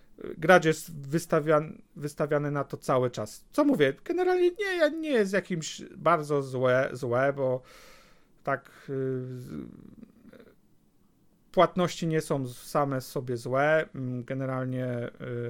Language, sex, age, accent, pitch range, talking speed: Polish, male, 40-59, native, 135-175 Hz, 110 wpm